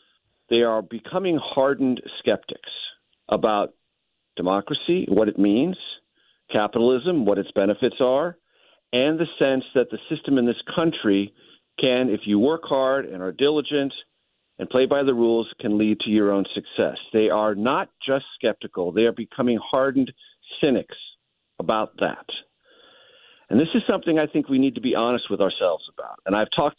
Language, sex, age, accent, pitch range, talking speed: English, male, 50-69, American, 115-170 Hz, 160 wpm